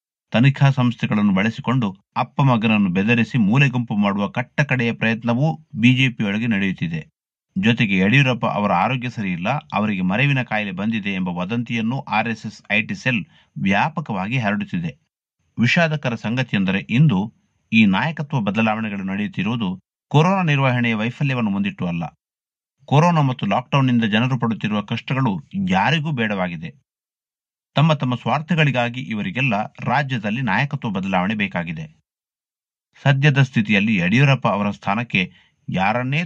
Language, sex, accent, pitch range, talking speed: Kannada, male, native, 110-145 Hz, 105 wpm